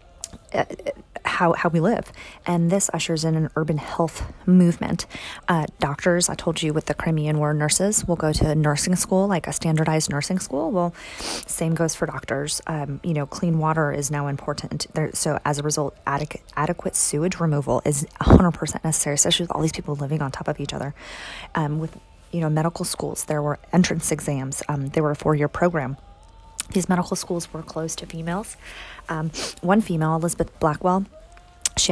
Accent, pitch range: American, 150-180 Hz